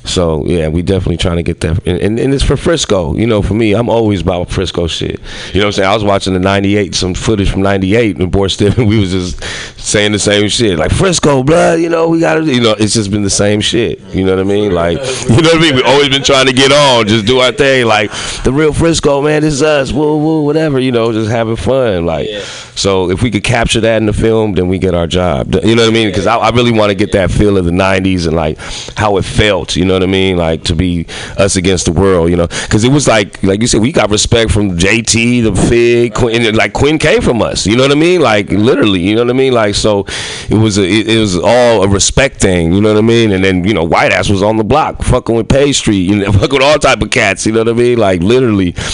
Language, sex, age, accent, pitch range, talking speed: English, male, 30-49, American, 95-120 Hz, 285 wpm